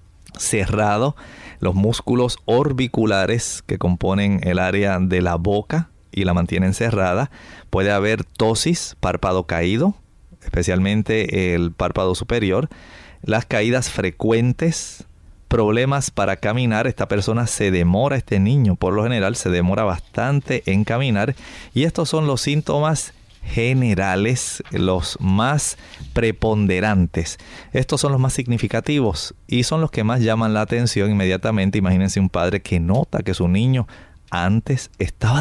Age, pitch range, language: 30-49, 95-125 Hz, Spanish